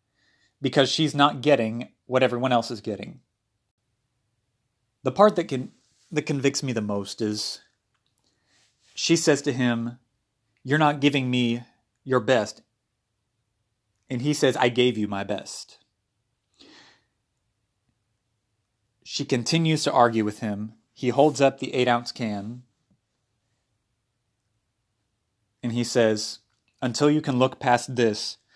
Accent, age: American, 30-49